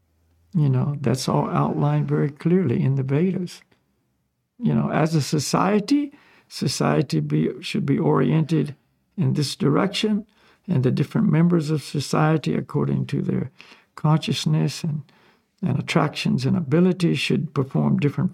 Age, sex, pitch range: 60-79, male, 130-185 Hz